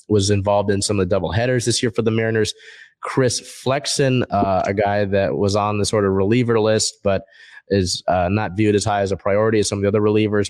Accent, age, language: American, 20-39, English